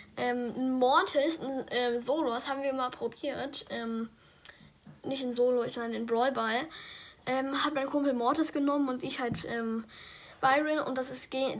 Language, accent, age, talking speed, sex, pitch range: German, German, 10-29, 175 wpm, female, 245-285 Hz